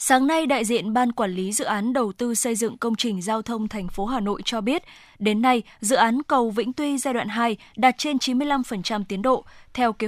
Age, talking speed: 10-29, 240 wpm